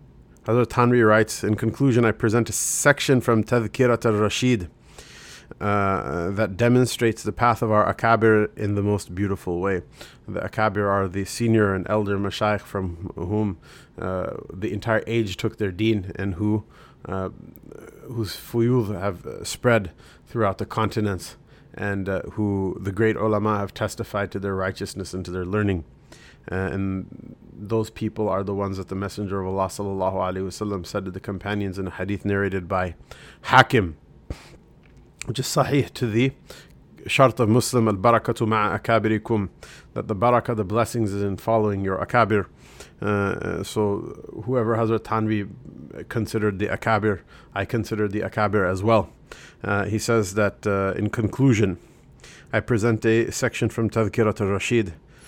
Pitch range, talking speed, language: 100-115 Hz, 150 wpm, English